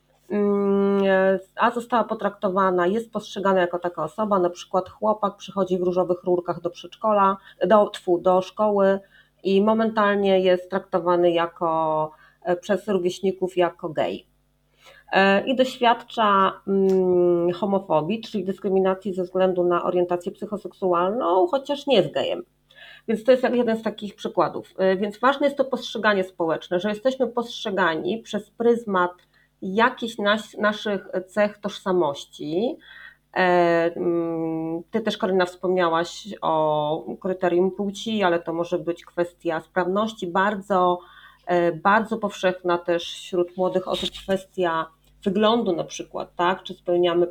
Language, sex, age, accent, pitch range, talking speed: Polish, female, 30-49, native, 175-205 Hz, 120 wpm